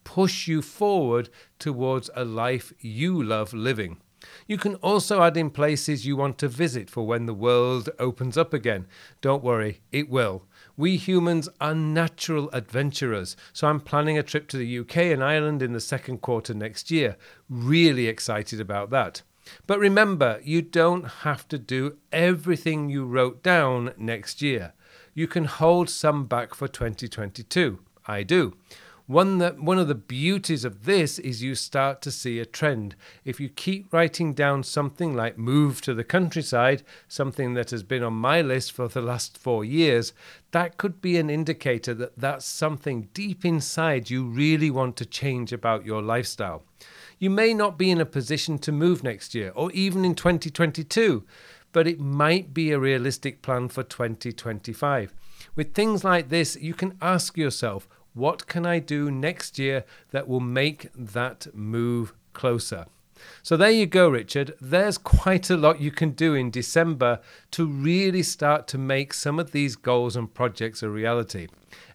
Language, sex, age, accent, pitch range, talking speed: English, male, 40-59, British, 120-165 Hz, 170 wpm